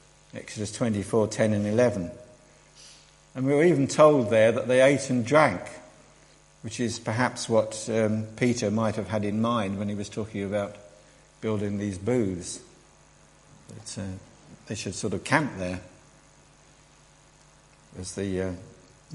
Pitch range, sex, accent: 100-125 Hz, male, British